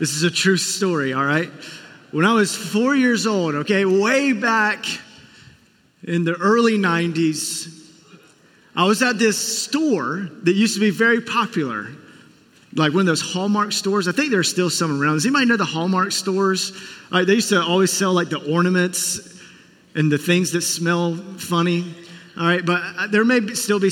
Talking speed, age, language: 180 wpm, 30-49, English